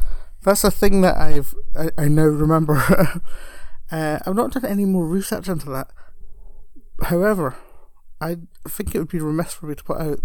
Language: English